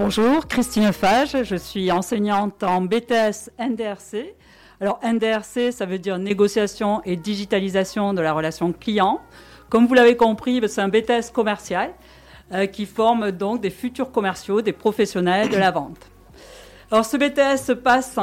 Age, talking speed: 50-69, 150 wpm